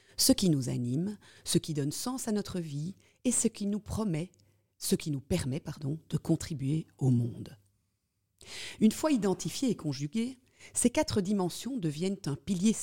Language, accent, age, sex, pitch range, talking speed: French, French, 40-59, female, 135-205 Hz, 170 wpm